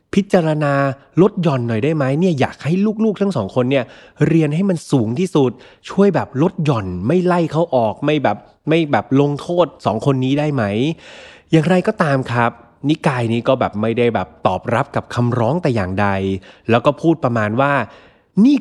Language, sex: Thai, male